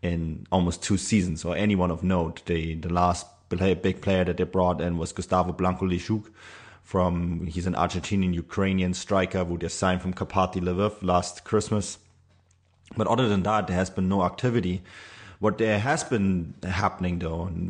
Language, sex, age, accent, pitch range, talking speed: English, male, 30-49, German, 90-100 Hz, 175 wpm